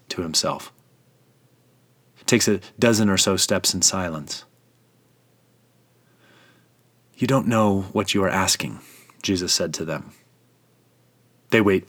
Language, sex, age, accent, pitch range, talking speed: English, male, 30-49, American, 105-140 Hz, 120 wpm